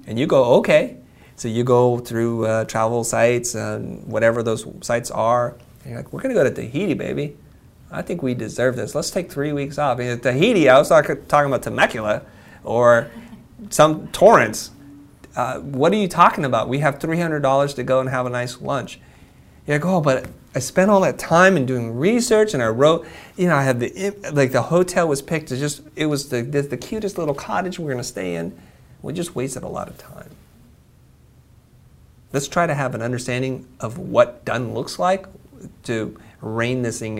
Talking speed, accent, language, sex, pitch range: 205 wpm, American, English, male, 125-175 Hz